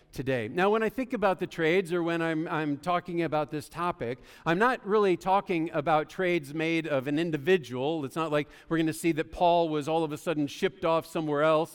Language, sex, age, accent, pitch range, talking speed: English, male, 50-69, American, 155-190 Hz, 225 wpm